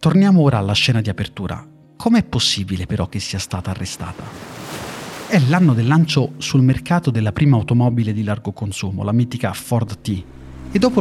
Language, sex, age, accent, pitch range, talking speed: Italian, male, 30-49, native, 110-155 Hz, 170 wpm